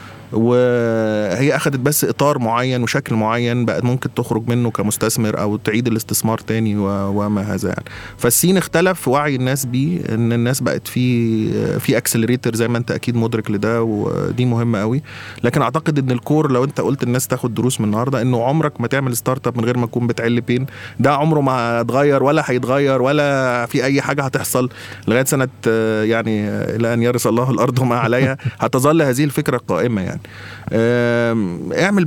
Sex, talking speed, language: male, 165 wpm, Arabic